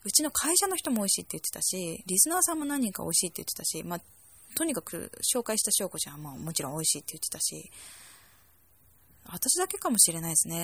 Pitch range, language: 165-250 Hz, Japanese